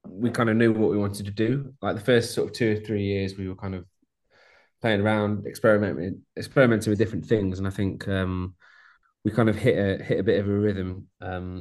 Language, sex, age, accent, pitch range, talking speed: English, male, 20-39, British, 95-110 Hz, 235 wpm